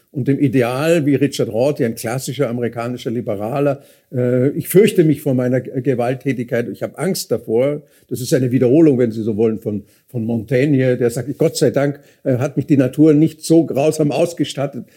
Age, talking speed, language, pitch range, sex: 50-69, 175 wpm, German, 125-150 Hz, male